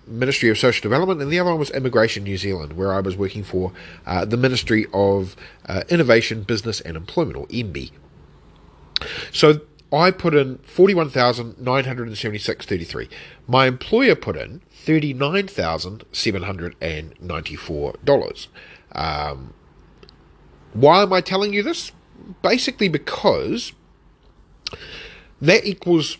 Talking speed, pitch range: 110 wpm, 90-135 Hz